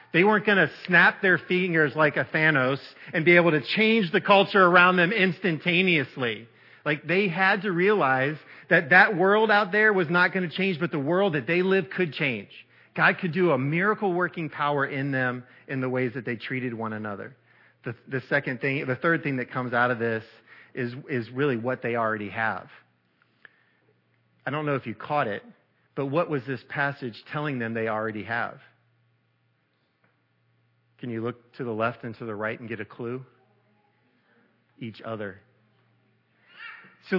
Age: 40-59